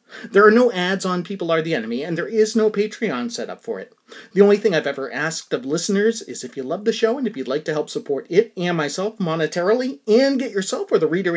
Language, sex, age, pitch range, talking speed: English, male, 30-49, 165-230 Hz, 260 wpm